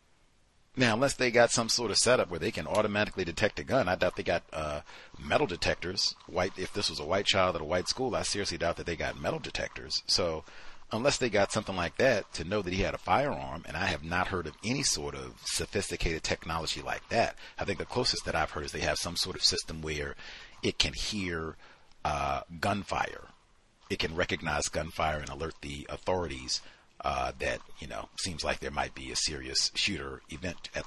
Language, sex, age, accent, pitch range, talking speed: English, male, 40-59, American, 80-105 Hz, 210 wpm